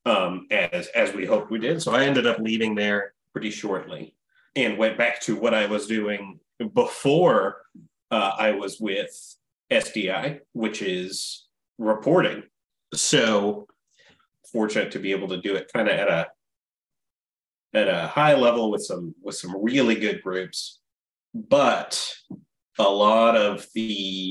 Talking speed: 150 wpm